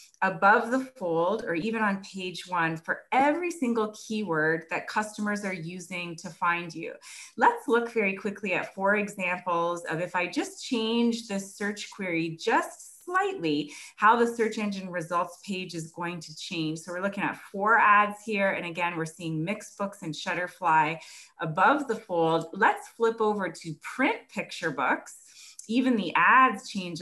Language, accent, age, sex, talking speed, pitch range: English, American, 30-49, female, 165 wpm, 170-225 Hz